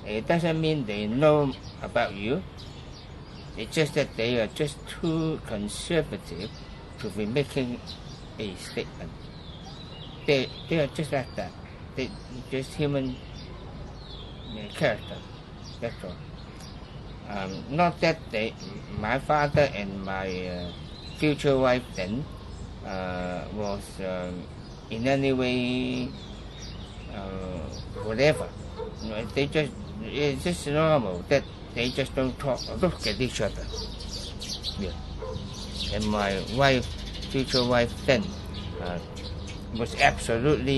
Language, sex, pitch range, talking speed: English, male, 95-135 Hz, 110 wpm